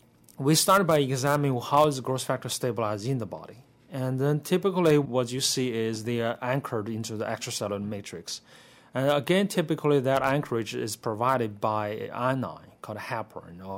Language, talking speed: English, 170 wpm